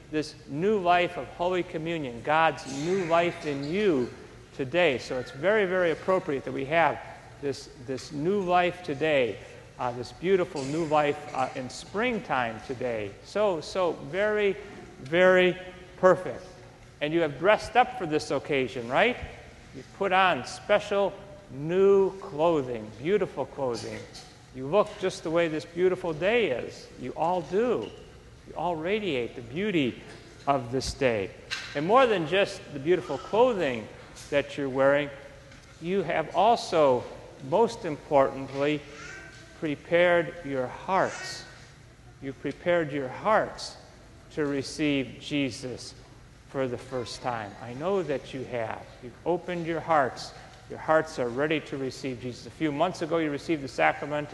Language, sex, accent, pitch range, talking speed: English, male, American, 135-180 Hz, 140 wpm